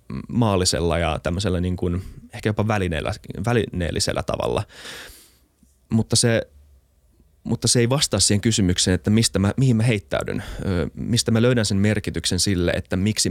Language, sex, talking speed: Finnish, male, 140 wpm